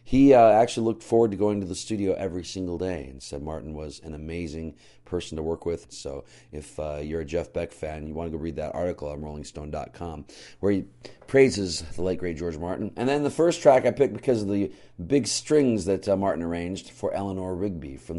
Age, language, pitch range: 40-59, English, 85-105 Hz